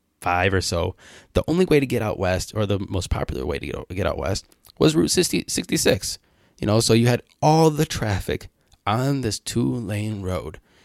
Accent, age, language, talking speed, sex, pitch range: American, 20-39, English, 210 wpm, male, 95-130 Hz